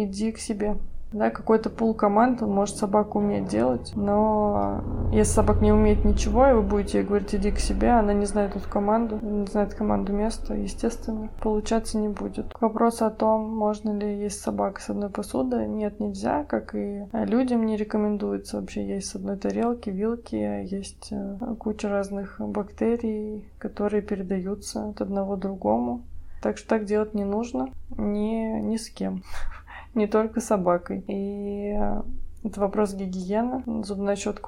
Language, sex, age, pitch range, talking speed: Russian, female, 20-39, 130-215 Hz, 160 wpm